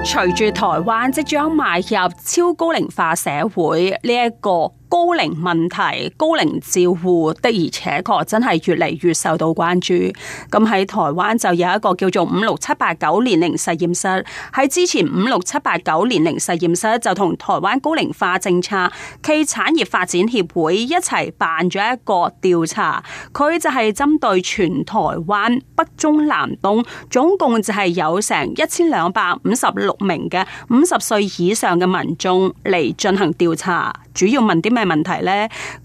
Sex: female